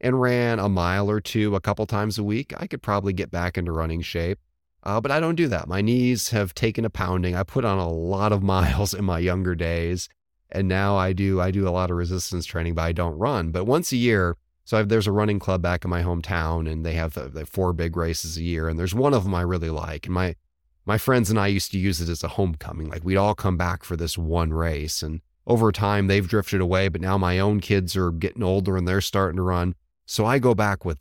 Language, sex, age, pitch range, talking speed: English, male, 30-49, 85-120 Hz, 260 wpm